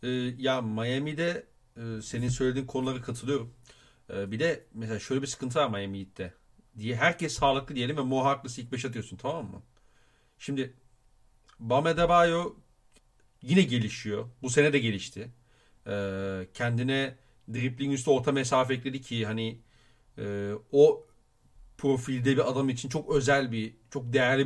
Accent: native